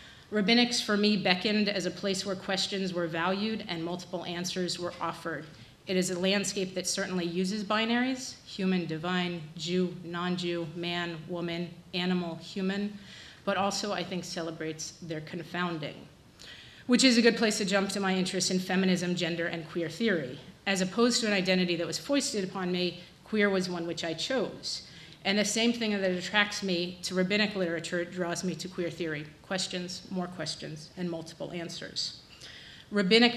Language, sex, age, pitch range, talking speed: English, female, 30-49, 175-205 Hz, 165 wpm